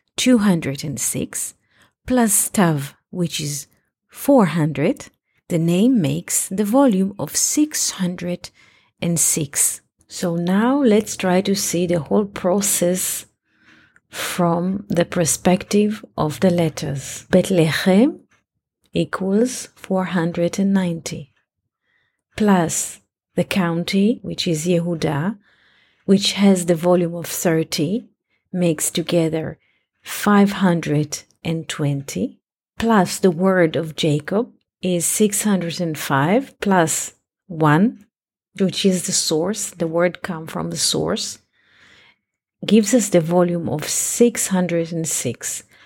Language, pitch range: English, 165-200 Hz